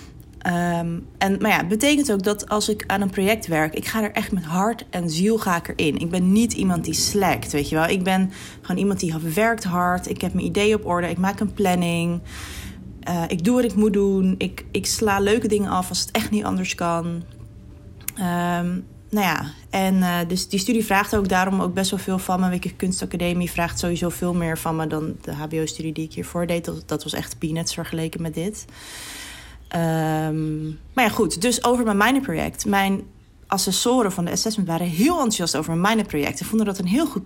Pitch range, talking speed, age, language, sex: 165-210 Hz, 220 wpm, 20-39, Dutch, female